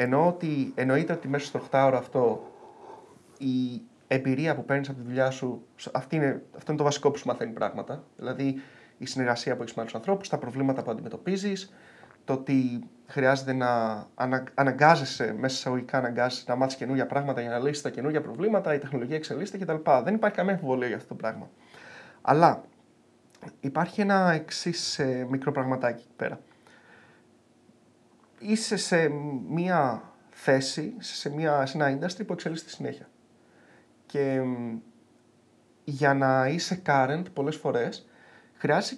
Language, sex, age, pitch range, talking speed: Greek, male, 30-49, 135-185 Hz, 155 wpm